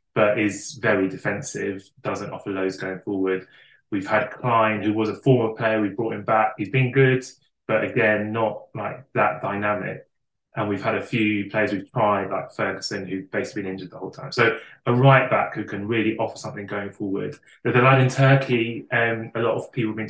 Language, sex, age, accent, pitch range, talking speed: English, male, 20-39, British, 105-125 Hz, 205 wpm